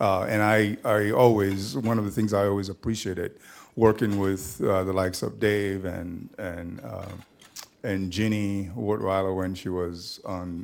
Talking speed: 165 wpm